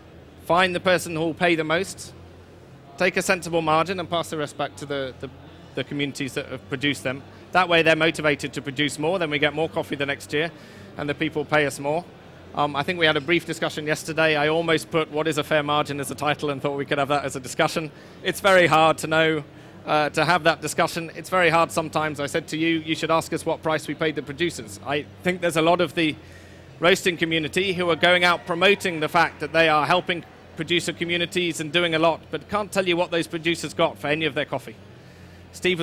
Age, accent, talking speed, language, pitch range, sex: 30-49, British, 240 wpm, English, 145-170 Hz, male